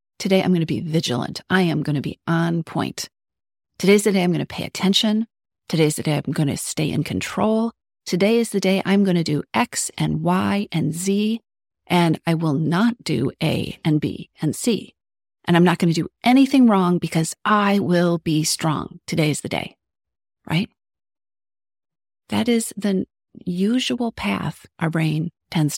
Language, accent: English, American